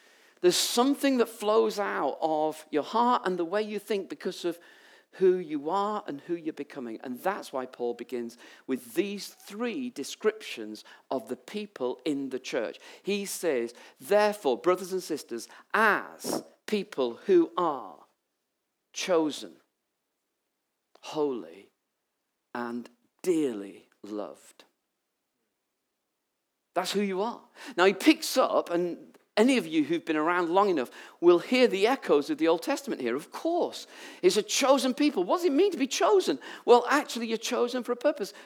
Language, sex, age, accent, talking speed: English, male, 50-69, British, 155 wpm